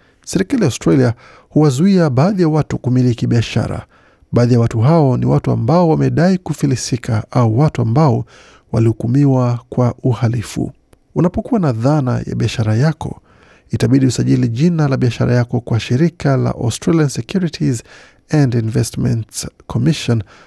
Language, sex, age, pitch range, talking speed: Swahili, male, 50-69, 120-145 Hz, 135 wpm